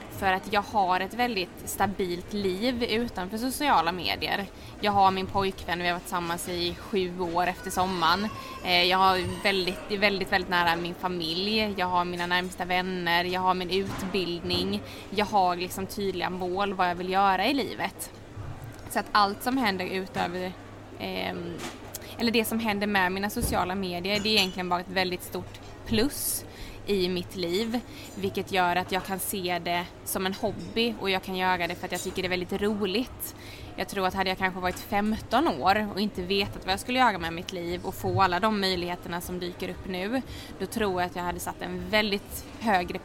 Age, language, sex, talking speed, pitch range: 20-39, Swedish, female, 195 wpm, 175-200 Hz